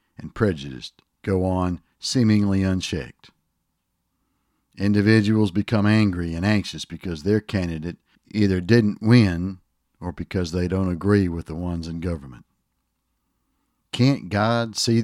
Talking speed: 120 wpm